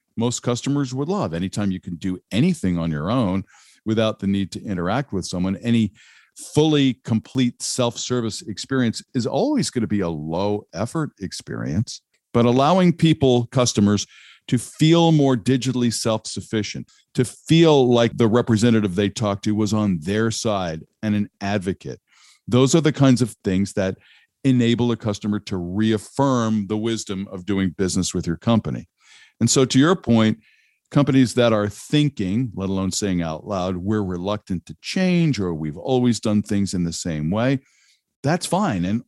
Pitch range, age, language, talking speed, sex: 100-135 Hz, 50-69, English, 165 wpm, male